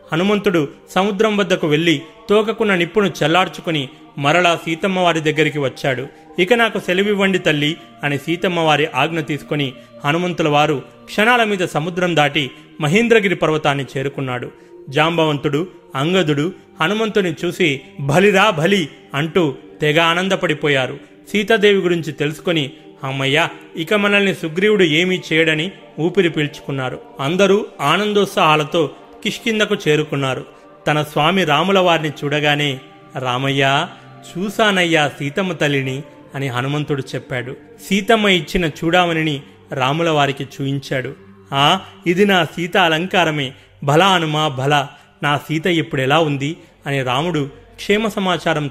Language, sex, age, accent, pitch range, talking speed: Telugu, male, 30-49, native, 140-180 Hz, 100 wpm